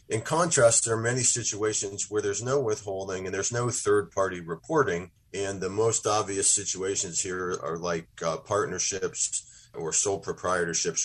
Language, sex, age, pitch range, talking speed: English, male, 40-59, 90-115 Hz, 150 wpm